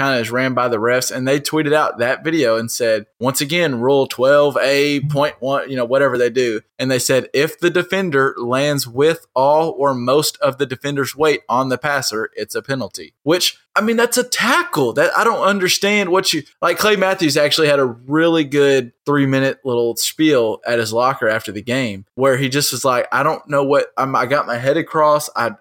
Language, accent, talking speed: English, American, 215 wpm